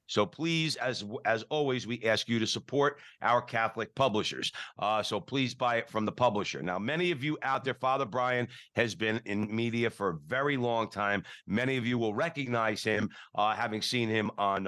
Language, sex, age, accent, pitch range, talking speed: English, male, 50-69, American, 110-130 Hz, 200 wpm